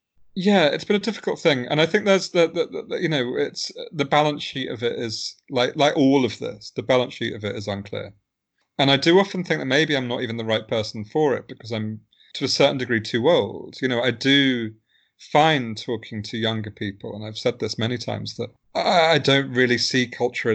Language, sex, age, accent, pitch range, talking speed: English, male, 30-49, British, 110-130 Hz, 230 wpm